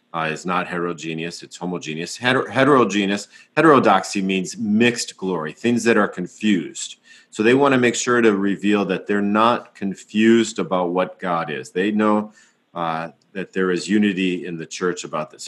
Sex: male